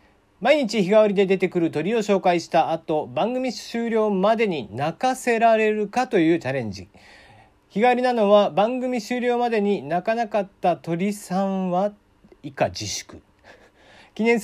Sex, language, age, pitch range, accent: male, Japanese, 40-59, 150-220 Hz, native